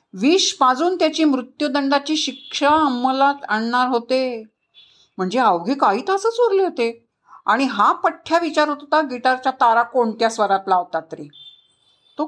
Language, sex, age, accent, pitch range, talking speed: Marathi, female, 50-69, native, 215-300 Hz, 125 wpm